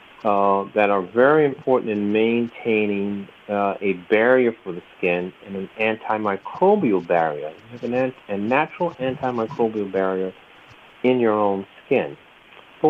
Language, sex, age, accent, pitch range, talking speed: English, male, 50-69, American, 110-135 Hz, 140 wpm